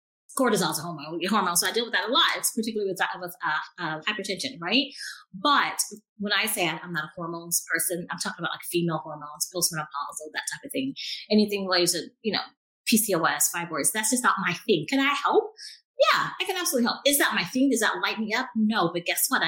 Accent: American